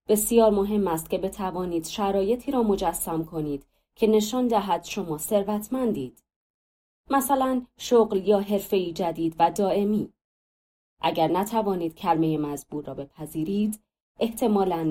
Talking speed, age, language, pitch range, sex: 115 wpm, 20-39, Persian, 155-210 Hz, female